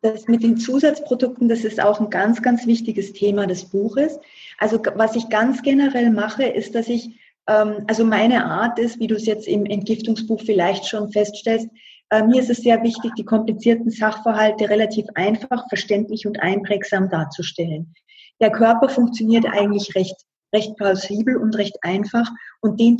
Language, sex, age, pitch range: German, female, 30-49, 190-230 Hz